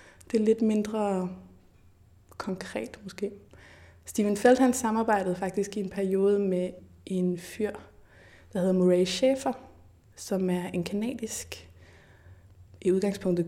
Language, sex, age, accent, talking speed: Danish, female, 20-39, native, 120 wpm